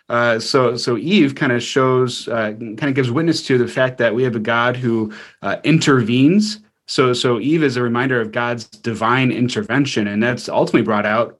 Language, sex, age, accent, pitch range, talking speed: English, male, 30-49, American, 110-130 Hz, 200 wpm